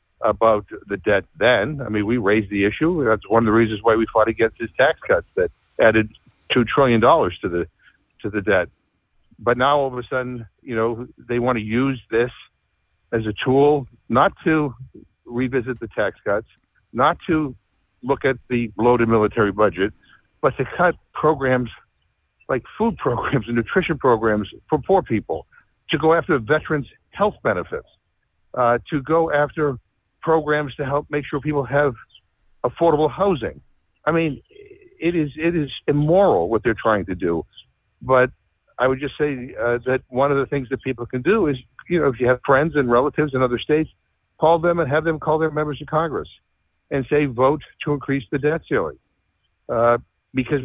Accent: American